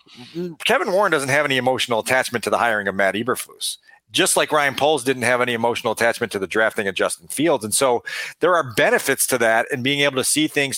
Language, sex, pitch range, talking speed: English, male, 125-155 Hz, 230 wpm